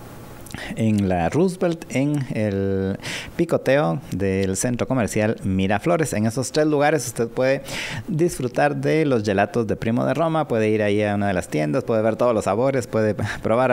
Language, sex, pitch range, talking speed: Spanish, male, 110-150 Hz, 170 wpm